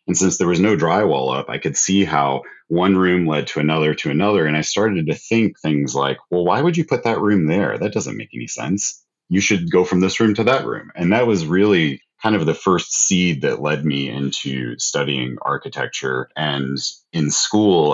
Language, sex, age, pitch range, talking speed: English, male, 30-49, 75-100 Hz, 215 wpm